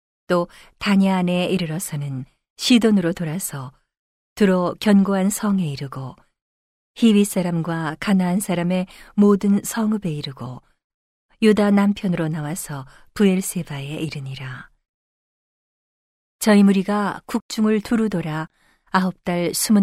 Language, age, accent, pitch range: Korean, 40-59, native, 155-205 Hz